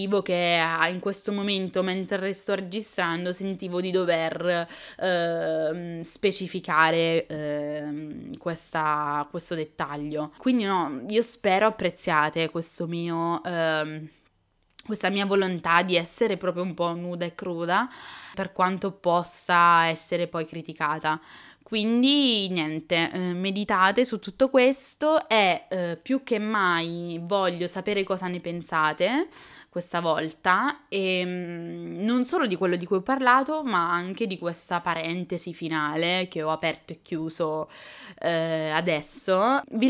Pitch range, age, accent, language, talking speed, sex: 165-205 Hz, 20-39, native, Italian, 120 wpm, female